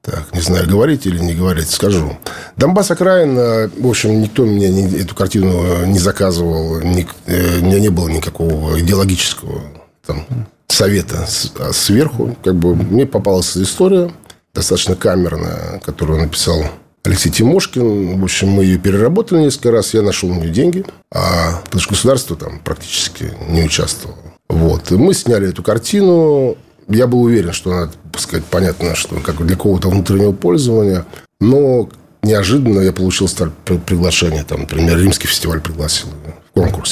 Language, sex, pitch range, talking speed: Russian, male, 85-115 Hz, 150 wpm